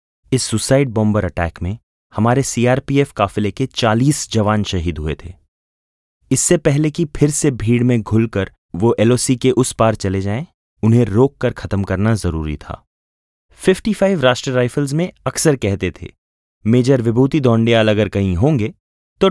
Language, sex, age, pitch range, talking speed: Hindi, male, 30-49, 95-140 Hz, 155 wpm